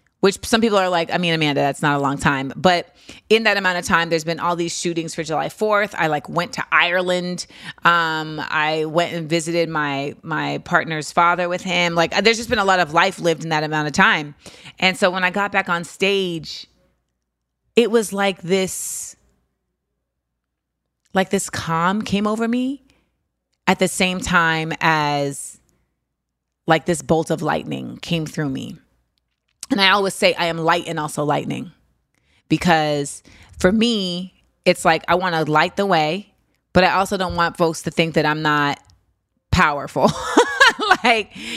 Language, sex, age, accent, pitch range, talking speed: English, female, 30-49, American, 155-195 Hz, 175 wpm